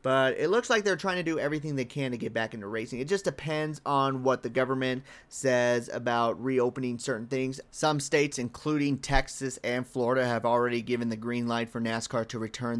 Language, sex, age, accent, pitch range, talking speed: English, male, 30-49, American, 120-155 Hz, 205 wpm